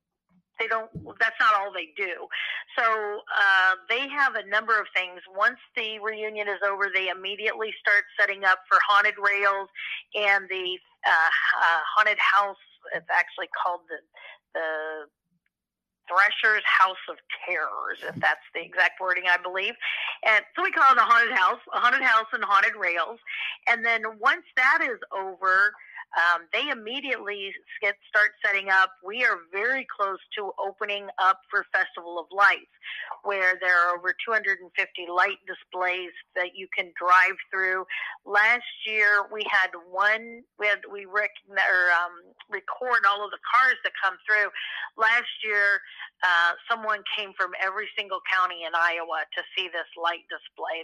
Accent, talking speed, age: American, 160 wpm, 40-59